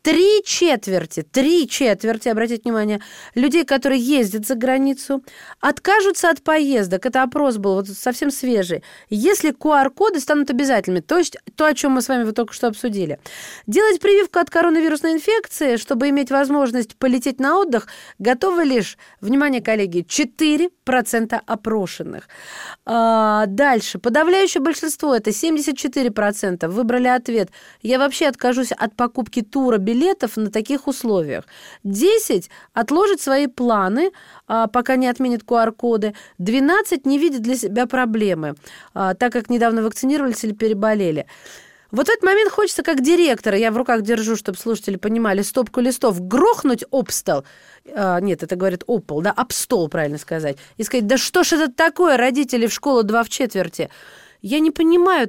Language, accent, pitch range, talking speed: Russian, native, 220-300 Hz, 150 wpm